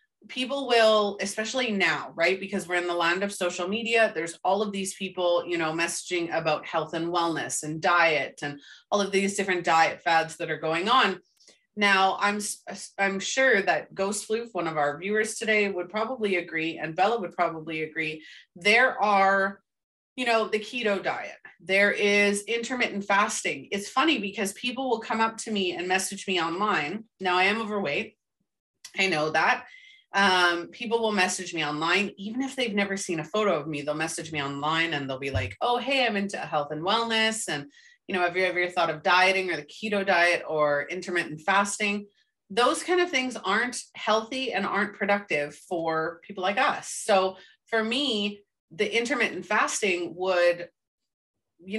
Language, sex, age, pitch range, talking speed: English, female, 30-49, 175-215 Hz, 180 wpm